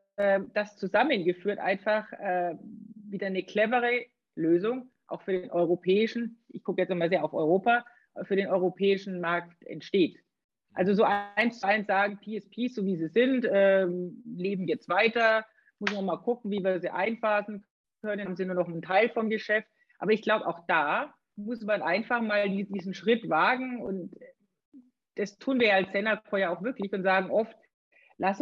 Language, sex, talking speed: German, female, 175 wpm